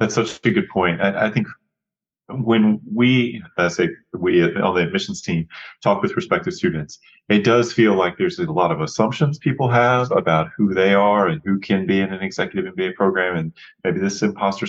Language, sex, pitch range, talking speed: English, male, 95-120 Hz, 200 wpm